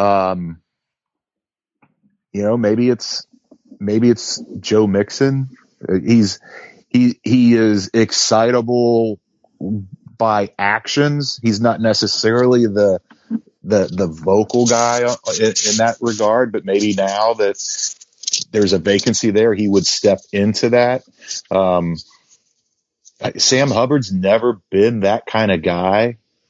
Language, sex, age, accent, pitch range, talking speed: English, male, 30-49, American, 95-120 Hz, 115 wpm